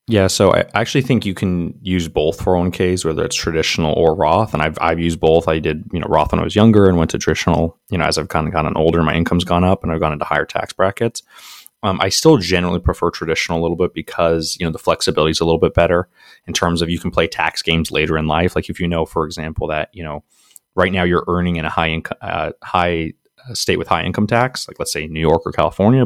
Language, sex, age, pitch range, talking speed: English, male, 20-39, 80-95 Hz, 265 wpm